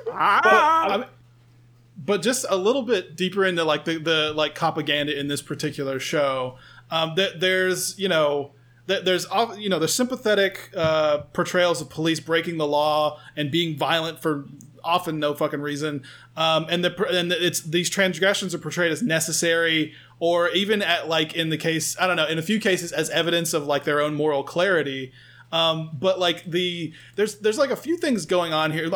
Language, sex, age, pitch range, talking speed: English, male, 20-39, 150-185 Hz, 185 wpm